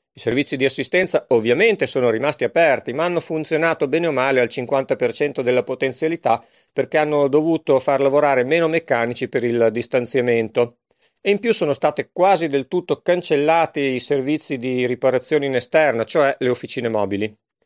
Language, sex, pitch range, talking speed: Italian, male, 130-165 Hz, 160 wpm